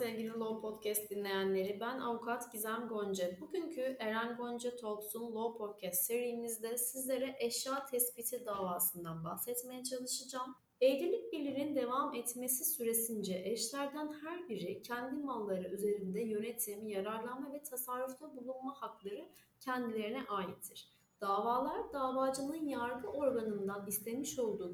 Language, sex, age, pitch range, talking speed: Turkish, female, 30-49, 215-290 Hz, 110 wpm